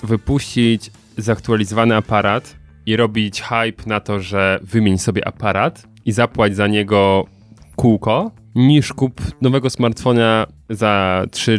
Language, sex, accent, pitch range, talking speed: Polish, male, native, 105-135 Hz, 120 wpm